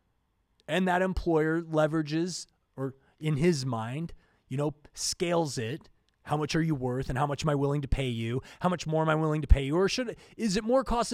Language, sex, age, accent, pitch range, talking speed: English, male, 20-39, American, 145-200 Hz, 225 wpm